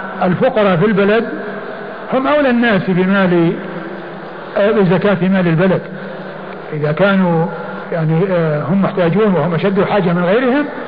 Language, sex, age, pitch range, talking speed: Arabic, male, 60-79, 180-215 Hz, 130 wpm